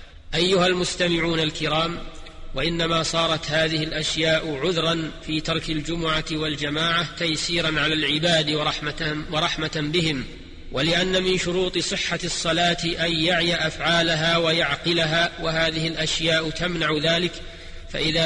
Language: Arabic